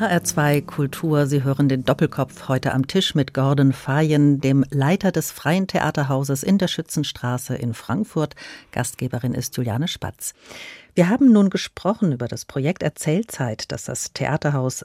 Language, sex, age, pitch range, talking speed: German, female, 50-69, 140-170 Hz, 150 wpm